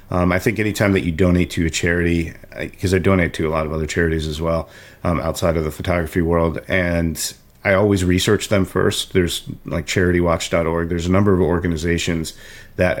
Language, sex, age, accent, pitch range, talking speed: English, male, 40-59, American, 85-95 Hz, 195 wpm